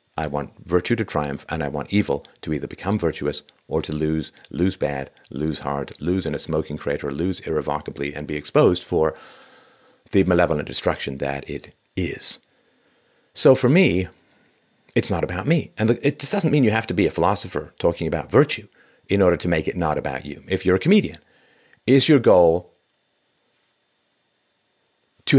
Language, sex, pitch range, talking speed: English, male, 80-115 Hz, 175 wpm